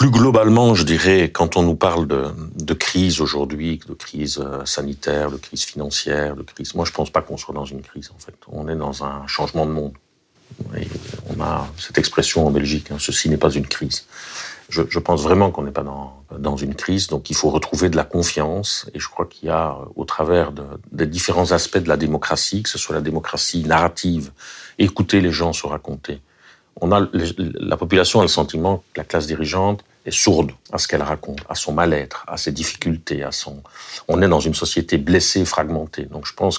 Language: French